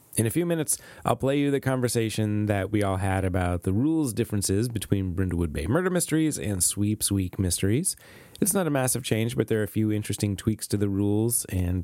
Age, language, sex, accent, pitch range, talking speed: 30-49, English, male, American, 100-125 Hz, 215 wpm